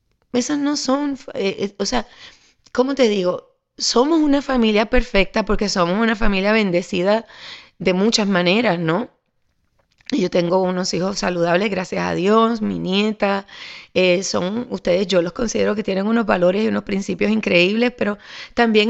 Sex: female